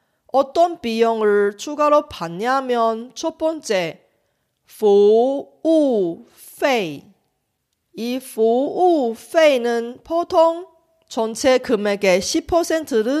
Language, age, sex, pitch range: Korean, 40-59, female, 210-310 Hz